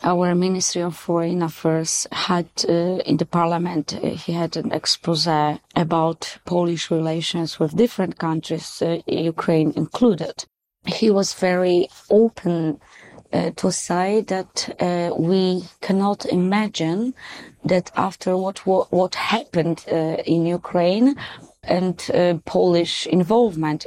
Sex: female